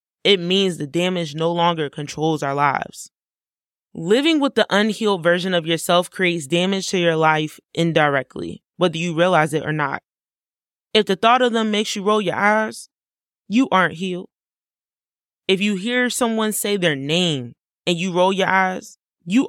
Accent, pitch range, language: American, 175-225 Hz, English